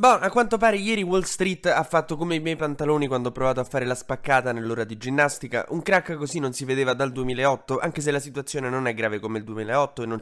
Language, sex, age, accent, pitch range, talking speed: Italian, male, 20-39, native, 120-155 Hz, 255 wpm